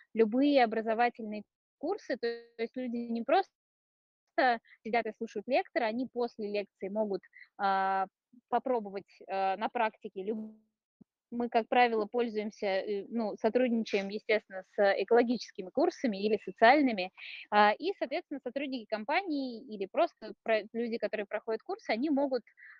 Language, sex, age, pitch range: Russian, female, 20-39, 210-260 Hz